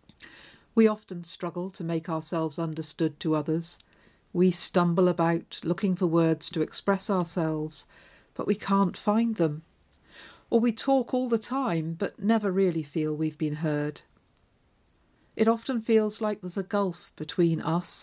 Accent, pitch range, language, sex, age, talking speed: British, 160-200 Hz, English, female, 50-69, 150 wpm